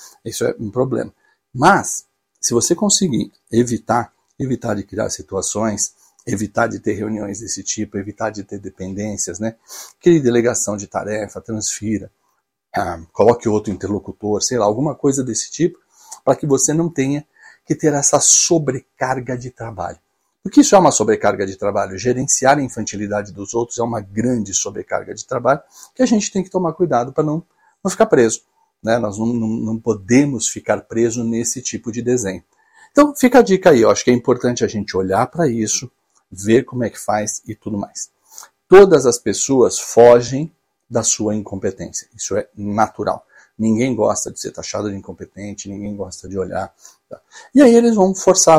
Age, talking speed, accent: 60-79, 175 wpm, Brazilian